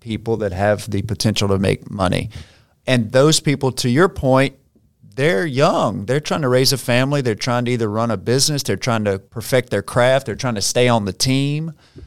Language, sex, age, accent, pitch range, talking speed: English, male, 40-59, American, 110-130 Hz, 210 wpm